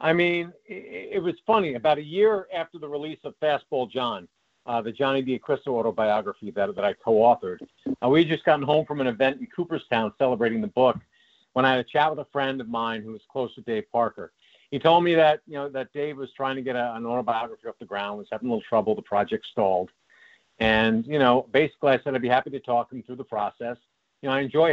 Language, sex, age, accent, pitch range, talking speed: English, male, 50-69, American, 115-150 Hz, 240 wpm